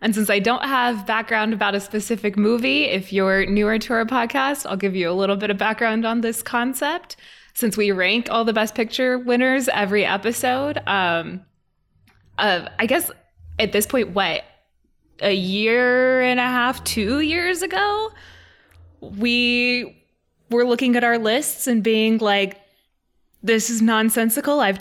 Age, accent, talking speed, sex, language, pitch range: 20-39, American, 160 wpm, female, English, 185-235 Hz